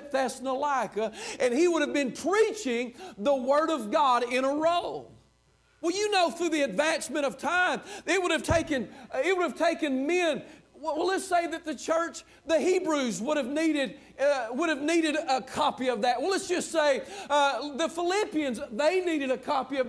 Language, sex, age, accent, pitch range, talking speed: English, male, 50-69, American, 230-320 Hz, 185 wpm